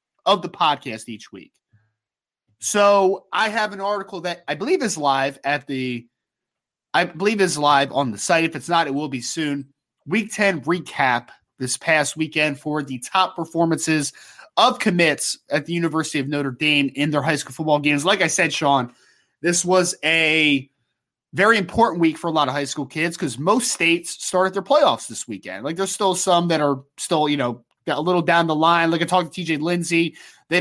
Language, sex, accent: English, male, American